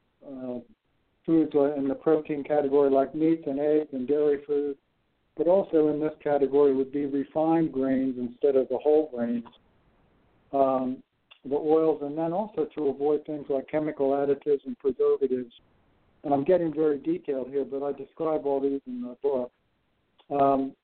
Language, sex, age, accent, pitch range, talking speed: English, male, 60-79, American, 130-155 Hz, 160 wpm